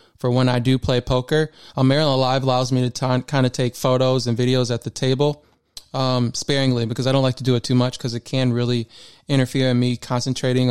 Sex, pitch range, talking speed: male, 125-140 Hz, 230 wpm